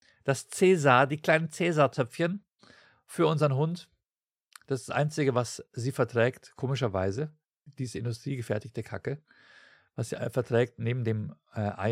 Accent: German